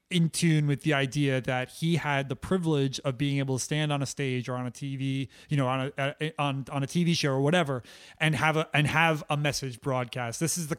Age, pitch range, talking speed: 30-49, 135-160 Hz, 255 wpm